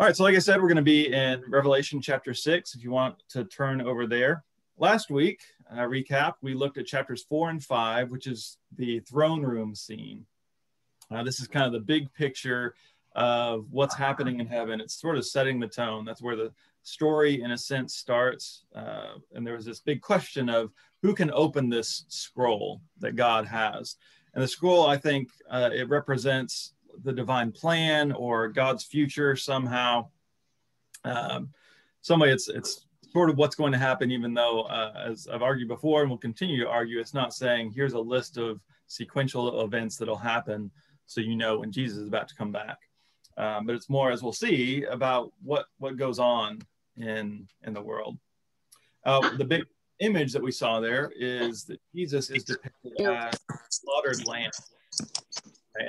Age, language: 30-49, English